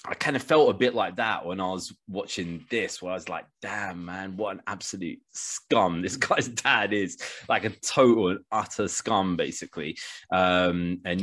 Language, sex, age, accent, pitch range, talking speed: English, male, 20-39, British, 85-105 Hz, 185 wpm